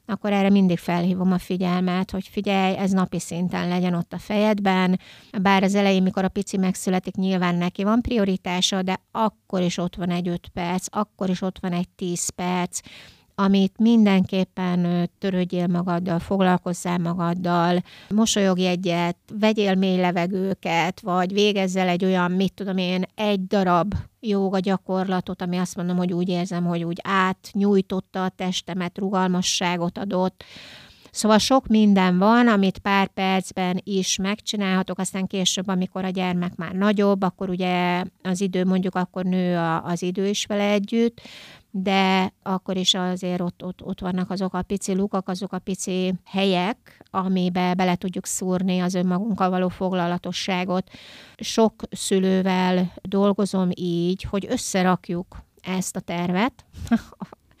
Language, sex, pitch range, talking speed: Hungarian, female, 180-195 Hz, 145 wpm